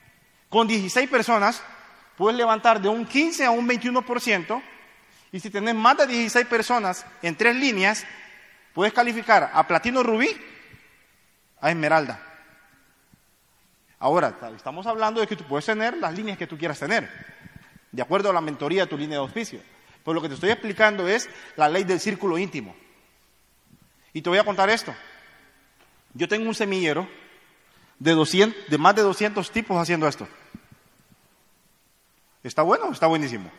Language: Spanish